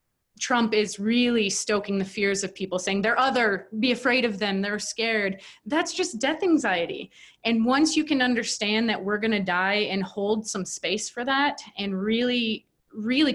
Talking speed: 175 wpm